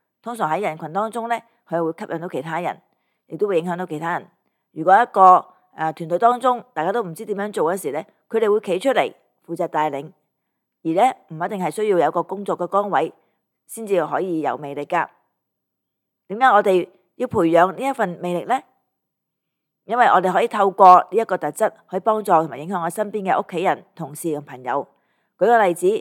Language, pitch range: Chinese, 165-220 Hz